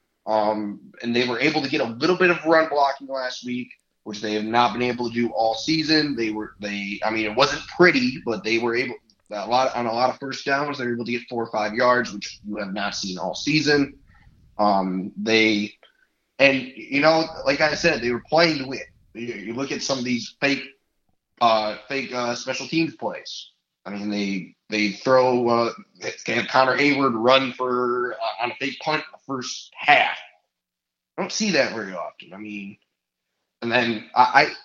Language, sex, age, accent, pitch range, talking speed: English, male, 20-39, American, 110-140 Hz, 205 wpm